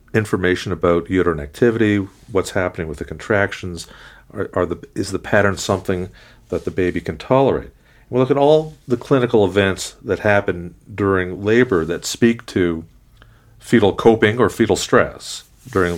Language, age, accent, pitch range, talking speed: English, 50-69, American, 85-105 Hz, 160 wpm